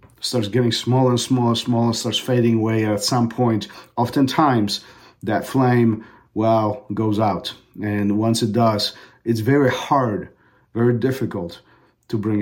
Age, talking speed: 50-69, 140 wpm